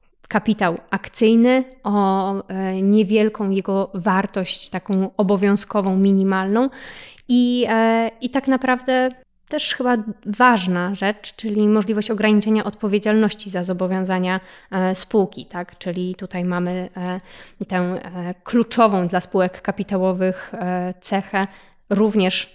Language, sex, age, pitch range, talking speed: Polish, female, 20-39, 190-225 Hz, 110 wpm